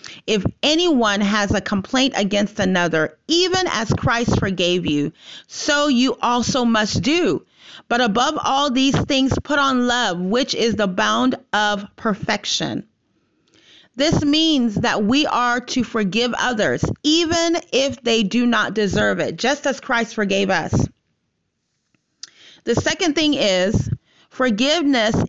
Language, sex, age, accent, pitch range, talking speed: English, female, 30-49, American, 200-270 Hz, 135 wpm